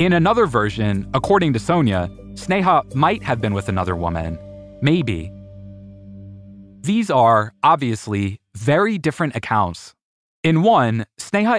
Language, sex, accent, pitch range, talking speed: English, male, American, 105-160 Hz, 120 wpm